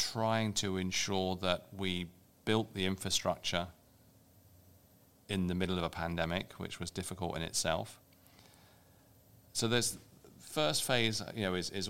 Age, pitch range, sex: 40-59, 85-110 Hz, male